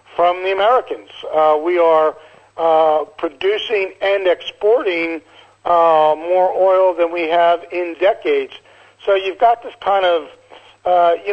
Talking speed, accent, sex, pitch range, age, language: 140 wpm, American, male, 160-190 Hz, 50-69, English